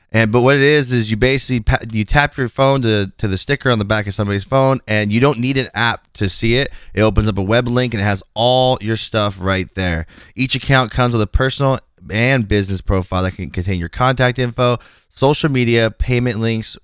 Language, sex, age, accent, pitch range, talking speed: English, male, 20-39, American, 100-120 Hz, 230 wpm